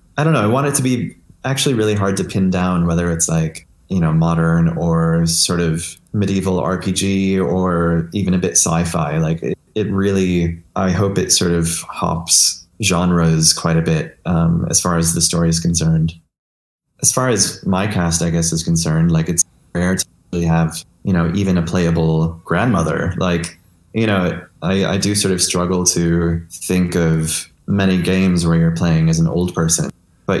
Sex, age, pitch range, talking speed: male, 20-39, 85-95 Hz, 185 wpm